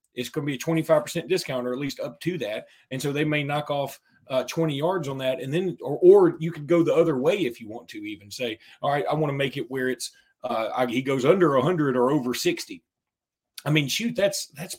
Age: 30-49